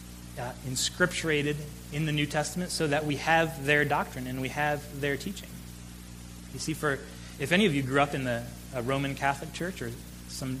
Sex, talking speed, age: male, 190 wpm, 30-49